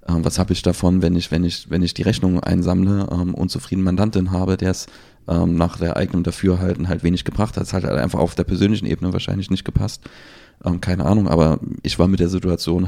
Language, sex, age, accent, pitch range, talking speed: German, male, 30-49, German, 85-95 Hz, 235 wpm